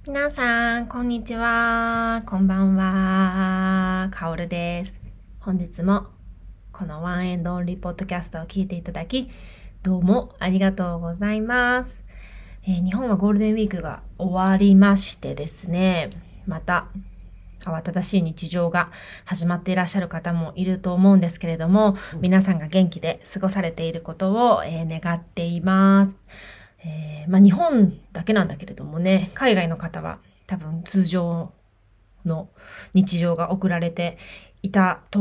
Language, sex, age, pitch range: Japanese, female, 20-39, 165-195 Hz